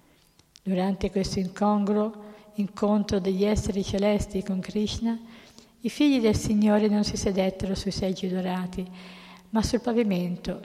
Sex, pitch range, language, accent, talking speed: female, 185-220 Hz, Italian, native, 125 wpm